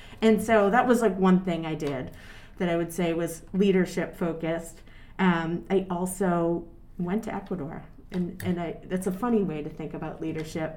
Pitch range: 175-240 Hz